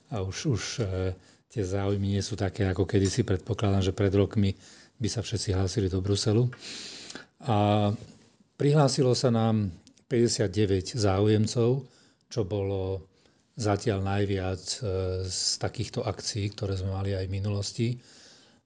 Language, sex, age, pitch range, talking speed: Slovak, male, 40-59, 95-110 Hz, 125 wpm